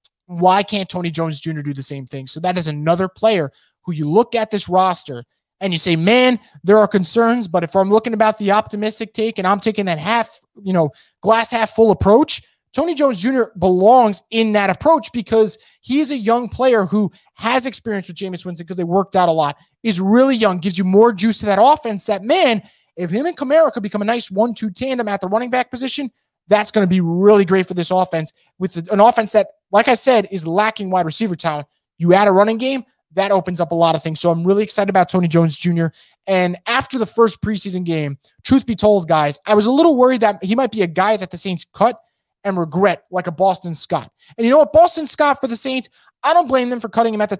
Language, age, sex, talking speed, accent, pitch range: English, 20-39, male, 240 wpm, American, 175-230 Hz